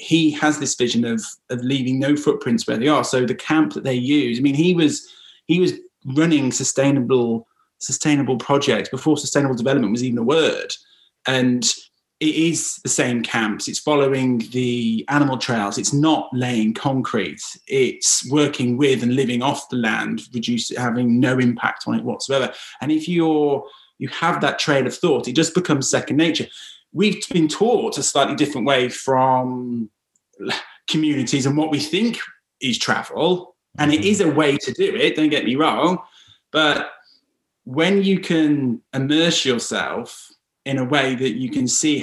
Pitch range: 130-165 Hz